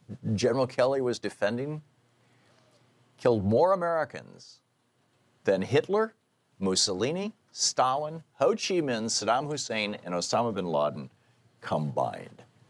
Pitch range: 105-145 Hz